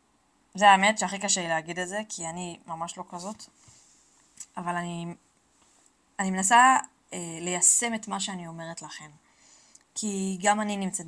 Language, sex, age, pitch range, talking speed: Hebrew, female, 20-39, 175-230 Hz, 150 wpm